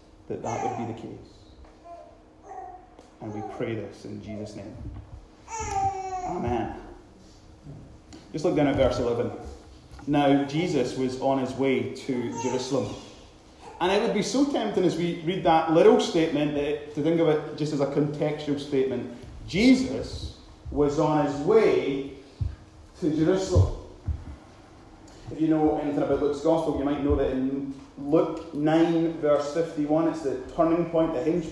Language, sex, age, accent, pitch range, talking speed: English, male, 30-49, British, 130-180 Hz, 150 wpm